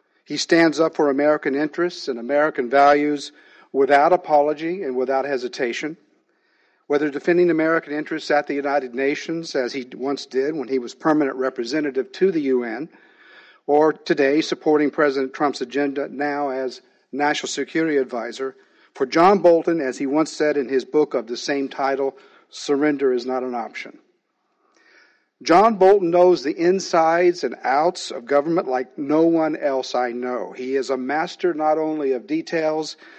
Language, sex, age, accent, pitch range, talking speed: English, male, 50-69, American, 135-165 Hz, 155 wpm